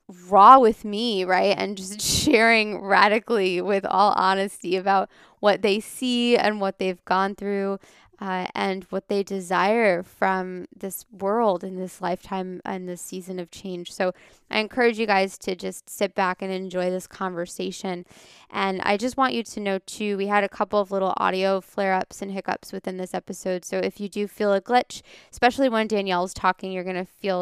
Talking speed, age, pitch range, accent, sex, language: 190 wpm, 10-29, 185-215 Hz, American, female, English